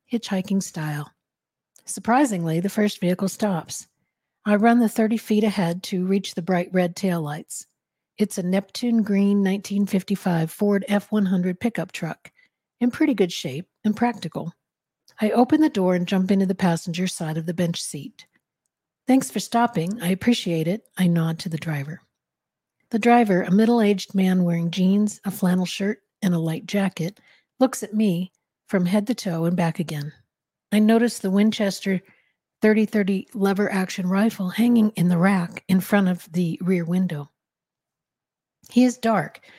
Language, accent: English, American